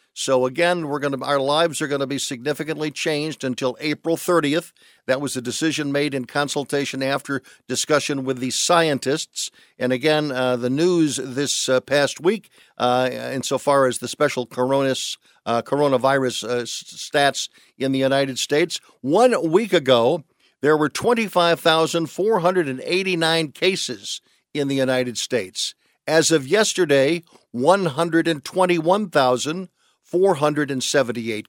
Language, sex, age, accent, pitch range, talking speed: English, male, 50-69, American, 130-170 Hz, 130 wpm